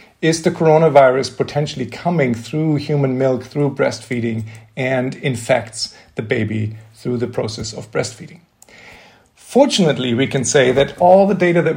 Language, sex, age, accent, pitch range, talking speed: English, male, 40-59, German, 120-150 Hz, 145 wpm